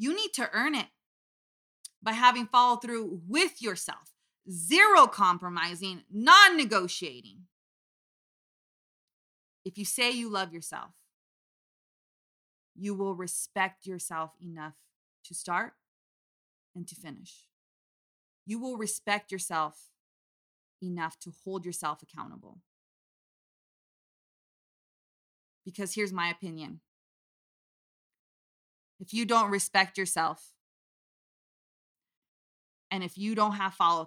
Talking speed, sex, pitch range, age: 95 wpm, female, 160-205 Hz, 20-39